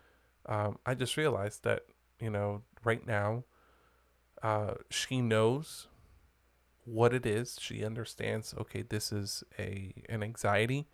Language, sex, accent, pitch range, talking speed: English, male, American, 100-115 Hz, 125 wpm